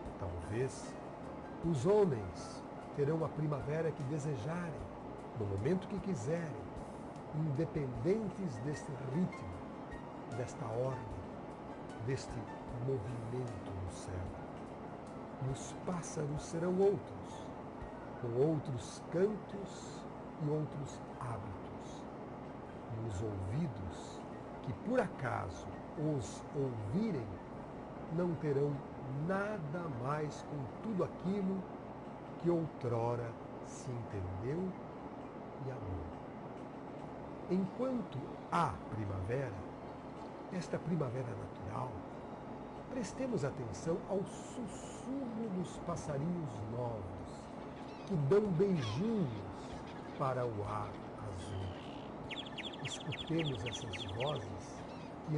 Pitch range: 115-170 Hz